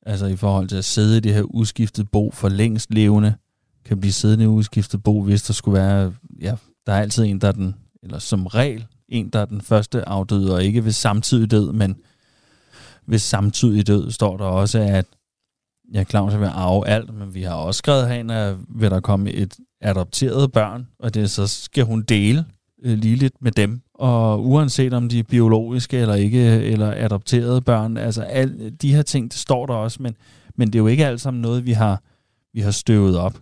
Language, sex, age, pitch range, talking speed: Danish, male, 30-49, 100-120 Hz, 210 wpm